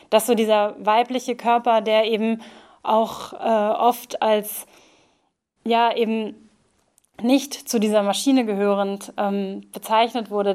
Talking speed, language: 120 wpm, German